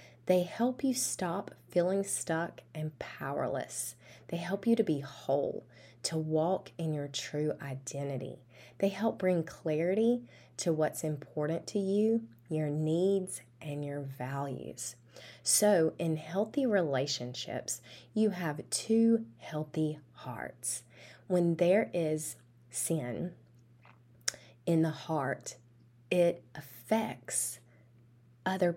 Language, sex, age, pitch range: English, female, 20-39, 130-185 Hz